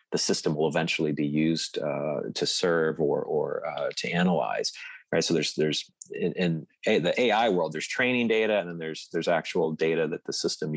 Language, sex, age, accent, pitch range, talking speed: English, male, 30-49, American, 80-100 Hz, 195 wpm